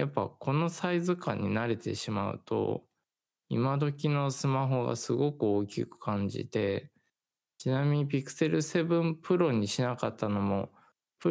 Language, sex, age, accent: Japanese, male, 20-39, native